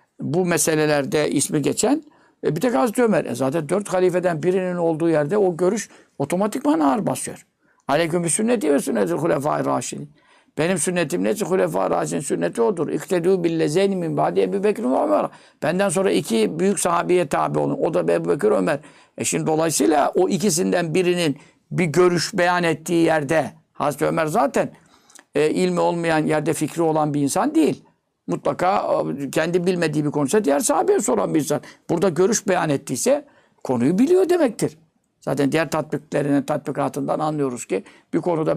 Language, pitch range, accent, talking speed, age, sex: Turkish, 150-195 Hz, native, 155 wpm, 60-79, male